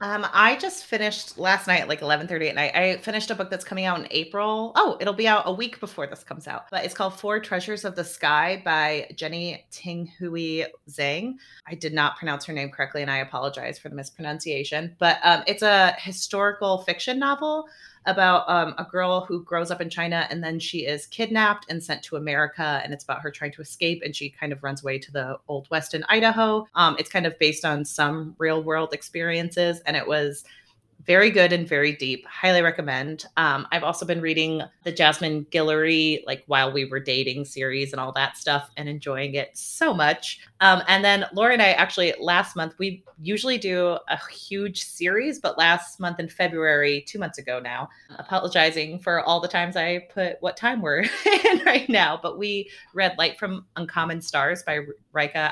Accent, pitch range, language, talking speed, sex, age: American, 150-190 Hz, English, 200 wpm, female, 30-49